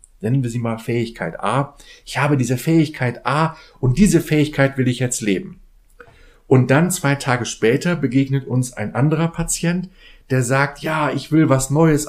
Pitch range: 115-150 Hz